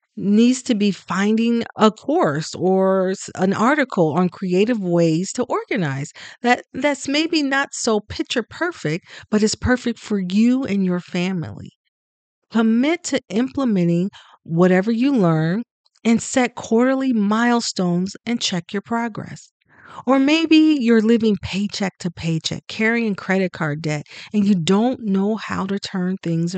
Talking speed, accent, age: 140 wpm, American, 40-59